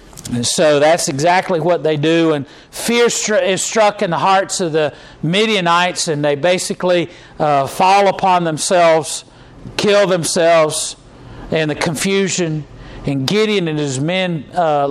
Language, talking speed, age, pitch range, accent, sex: English, 145 wpm, 50-69, 140-190 Hz, American, male